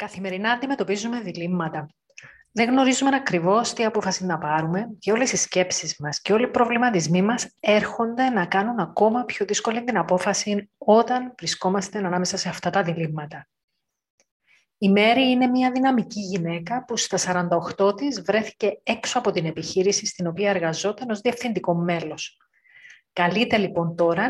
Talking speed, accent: 145 wpm, native